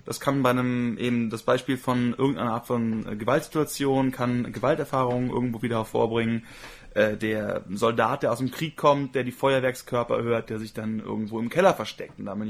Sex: male